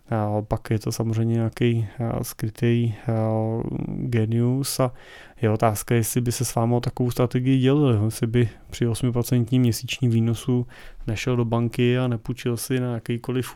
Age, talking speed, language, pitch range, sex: 20-39, 145 wpm, Czech, 115-130 Hz, male